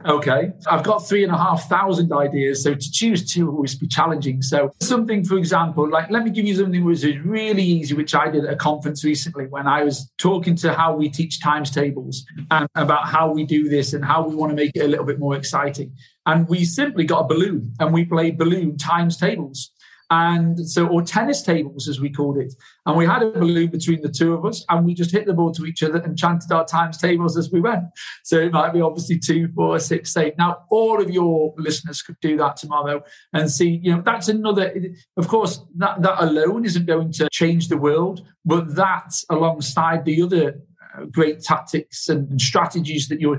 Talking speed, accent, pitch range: 220 wpm, British, 150-170 Hz